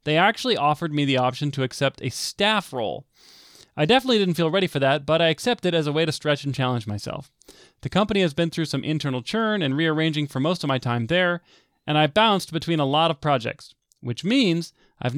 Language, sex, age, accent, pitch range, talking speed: English, male, 30-49, American, 135-170 Hz, 225 wpm